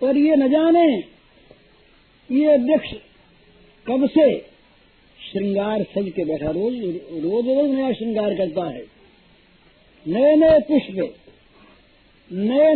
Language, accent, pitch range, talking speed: Hindi, native, 185-260 Hz, 110 wpm